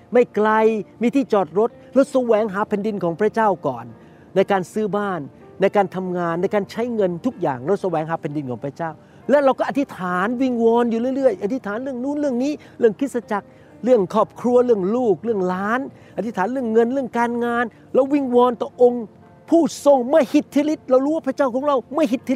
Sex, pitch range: male, 170-240 Hz